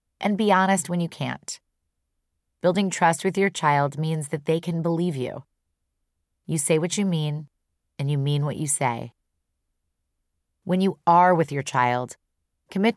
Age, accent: 30-49, American